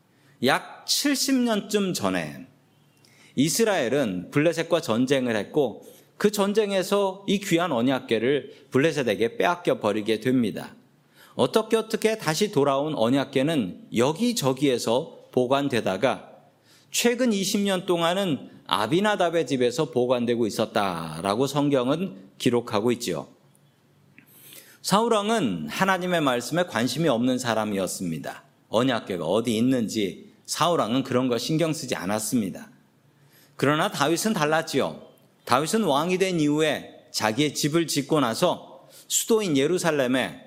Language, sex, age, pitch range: Korean, male, 40-59, 125-190 Hz